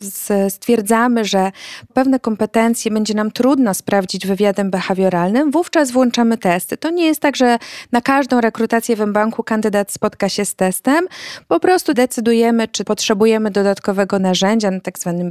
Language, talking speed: Polish, 150 wpm